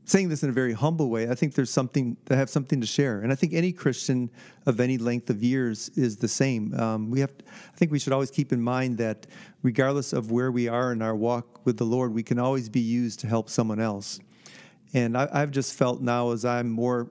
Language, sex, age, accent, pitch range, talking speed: English, male, 40-59, American, 115-135 Hz, 250 wpm